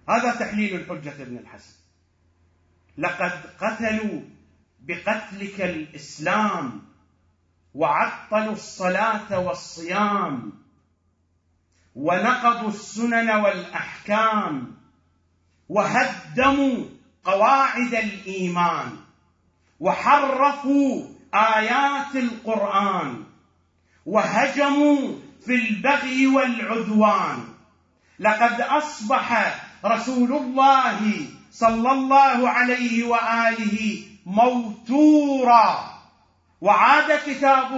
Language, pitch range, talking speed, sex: English, 200-275 Hz, 55 wpm, male